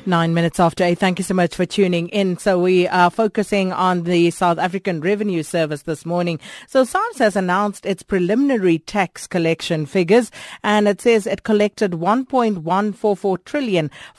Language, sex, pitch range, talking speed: English, female, 165-200 Hz, 160 wpm